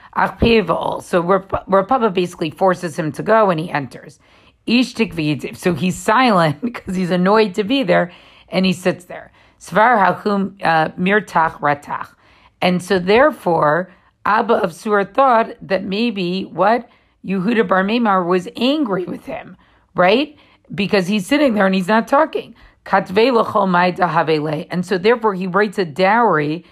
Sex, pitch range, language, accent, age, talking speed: female, 175-225 Hz, English, American, 50-69, 125 wpm